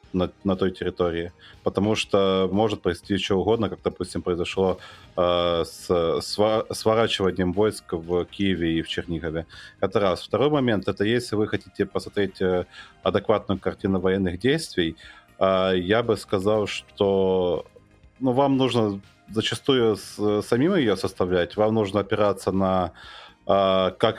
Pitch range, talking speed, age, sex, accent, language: 90-110 Hz, 135 wpm, 30-49, male, native, Russian